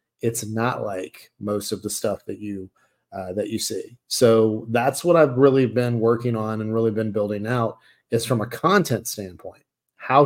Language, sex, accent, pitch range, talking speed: English, male, American, 110-130 Hz, 185 wpm